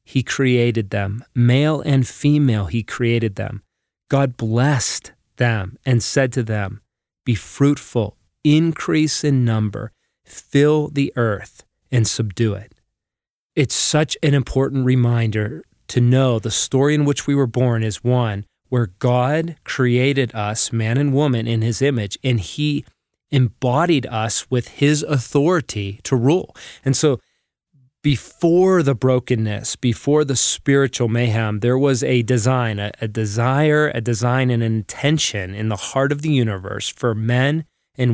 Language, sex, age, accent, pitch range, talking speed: English, male, 30-49, American, 115-140 Hz, 145 wpm